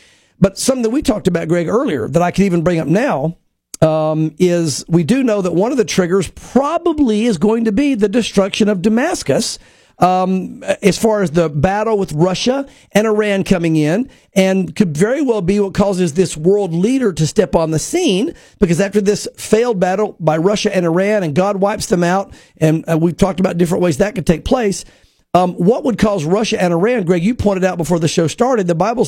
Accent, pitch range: American, 175-220 Hz